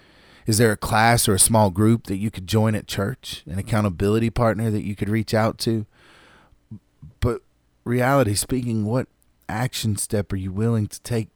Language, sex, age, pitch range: English, male, 30-49, 90-105 Hz